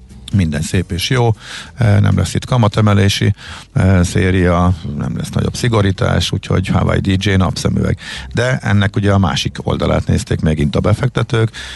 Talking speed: 145 wpm